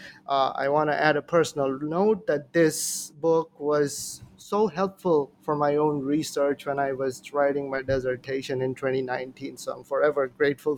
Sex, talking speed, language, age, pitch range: male, 165 wpm, English, 20-39, 145-165 Hz